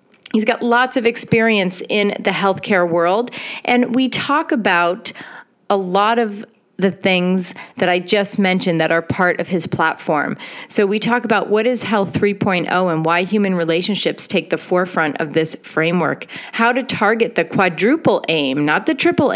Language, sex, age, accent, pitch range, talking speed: English, female, 30-49, American, 175-230 Hz, 170 wpm